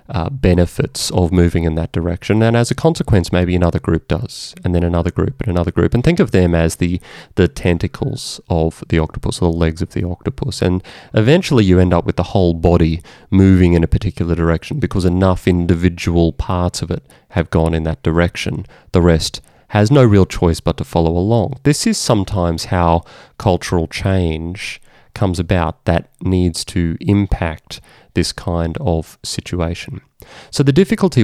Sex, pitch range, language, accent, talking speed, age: male, 85-115 Hz, English, Australian, 180 wpm, 30-49